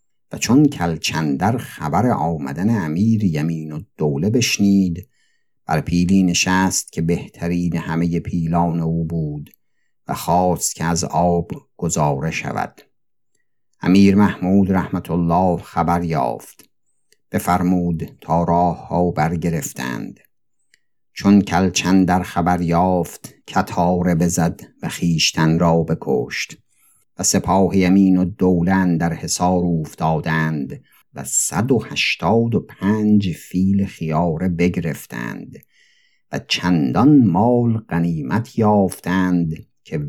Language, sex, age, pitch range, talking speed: Persian, male, 50-69, 85-100 Hz, 105 wpm